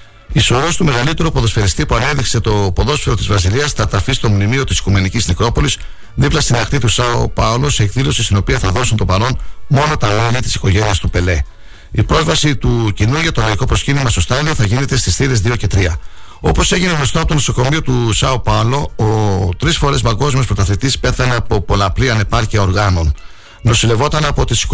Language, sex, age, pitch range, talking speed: Greek, male, 60-79, 100-135 Hz, 190 wpm